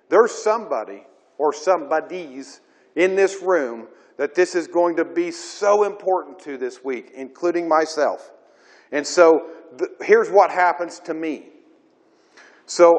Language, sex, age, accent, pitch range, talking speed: English, male, 50-69, American, 155-195 Hz, 135 wpm